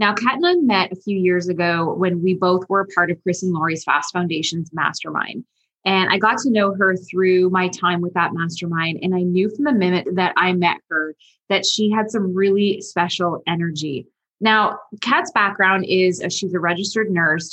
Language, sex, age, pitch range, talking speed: English, female, 20-39, 175-210 Hz, 200 wpm